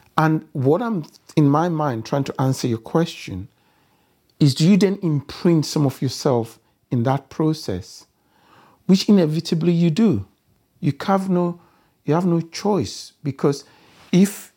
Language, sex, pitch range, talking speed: English, male, 115-160 Hz, 145 wpm